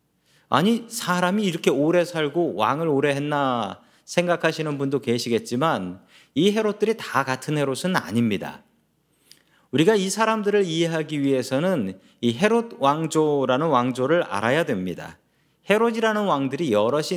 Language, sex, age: Korean, male, 40-59